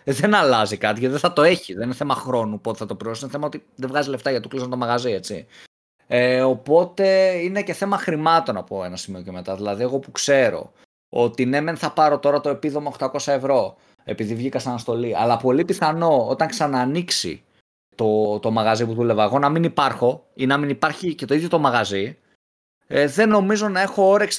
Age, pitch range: 20-39, 120-165 Hz